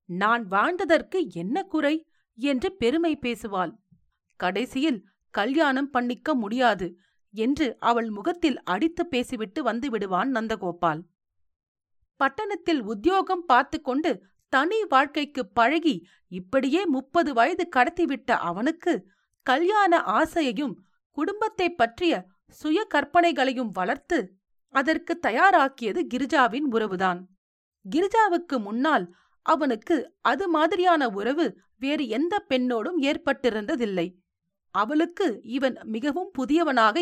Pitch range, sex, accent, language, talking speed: 220-325 Hz, female, native, Tamil, 90 wpm